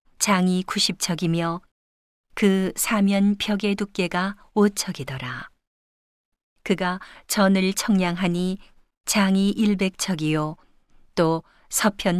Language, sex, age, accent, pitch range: Korean, female, 40-59, native, 175-200 Hz